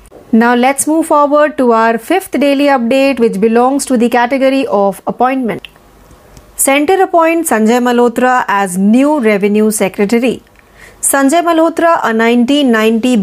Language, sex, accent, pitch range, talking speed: Marathi, female, native, 220-295 Hz, 125 wpm